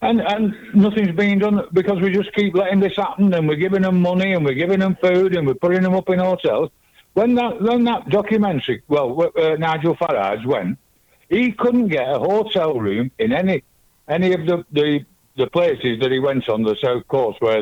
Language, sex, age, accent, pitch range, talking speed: English, male, 60-79, British, 130-200 Hz, 210 wpm